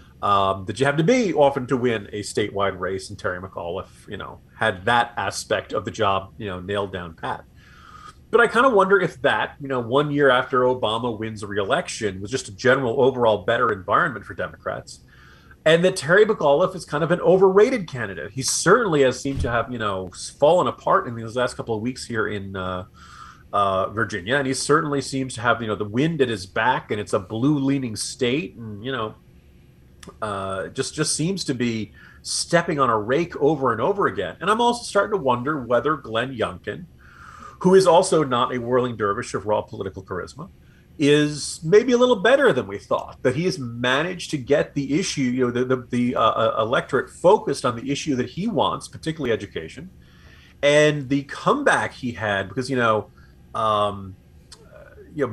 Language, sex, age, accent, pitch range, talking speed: English, male, 30-49, American, 105-150 Hz, 200 wpm